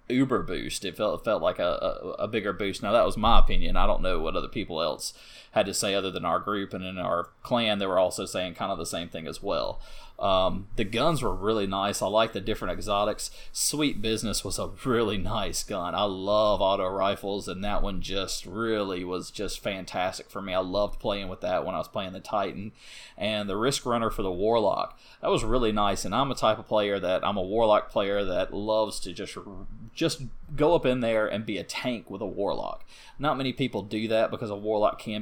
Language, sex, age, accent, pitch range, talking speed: English, male, 30-49, American, 100-115 Hz, 230 wpm